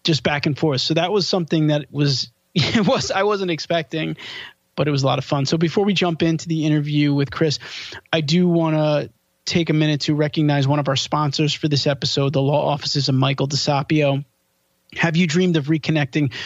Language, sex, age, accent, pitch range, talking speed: English, male, 20-39, American, 140-170 Hz, 205 wpm